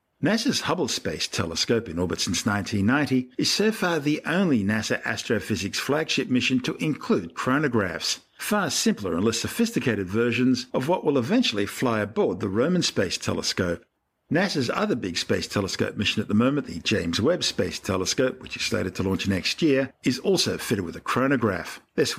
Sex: male